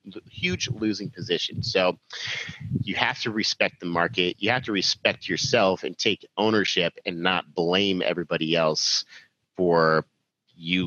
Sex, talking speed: male, 140 wpm